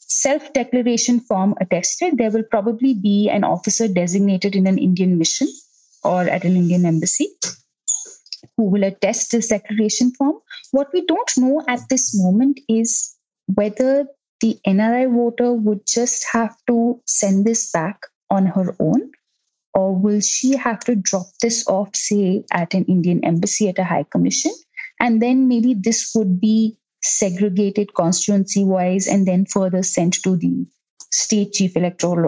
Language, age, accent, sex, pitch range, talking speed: English, 30-49, Indian, female, 190-240 Hz, 150 wpm